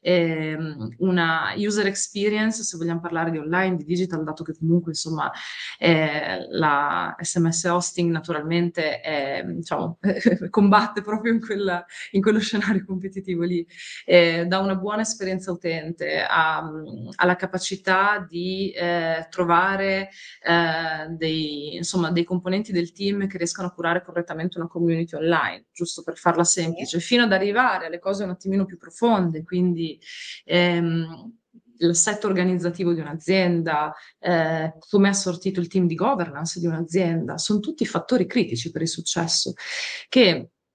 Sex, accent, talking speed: female, native, 135 wpm